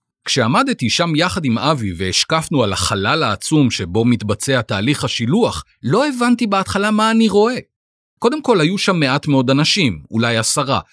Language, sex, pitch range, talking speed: Hebrew, male, 130-200 Hz, 155 wpm